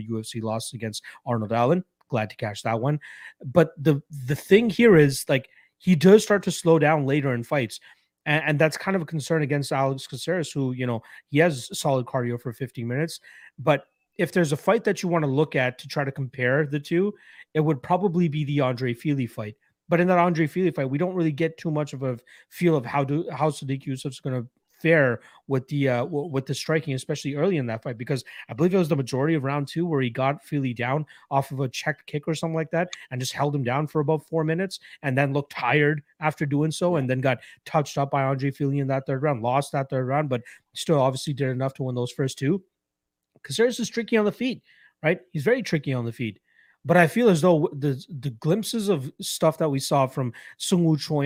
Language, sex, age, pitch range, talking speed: English, male, 30-49, 130-160 Hz, 235 wpm